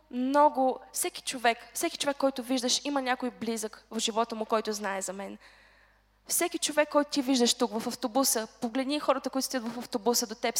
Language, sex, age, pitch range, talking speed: Bulgarian, female, 10-29, 255-310 Hz, 185 wpm